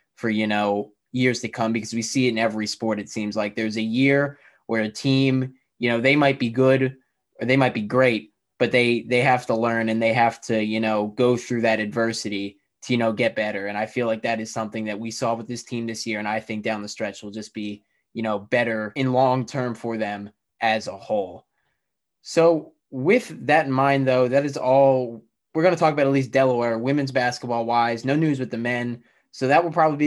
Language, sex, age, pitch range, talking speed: English, male, 20-39, 115-135 Hz, 235 wpm